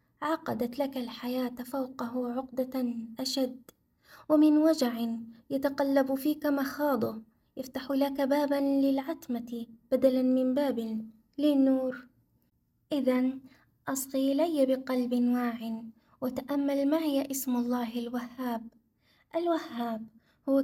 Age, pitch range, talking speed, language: 20-39, 240-280 Hz, 90 wpm, Arabic